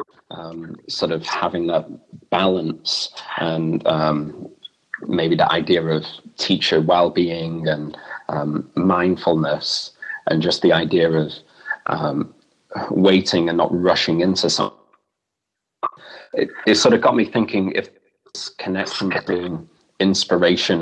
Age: 30-49